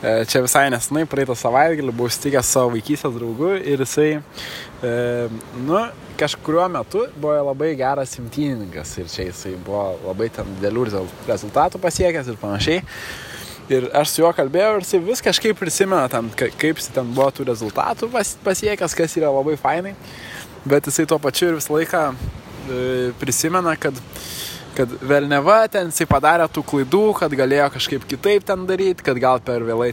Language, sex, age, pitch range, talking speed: English, male, 20-39, 120-160 Hz, 155 wpm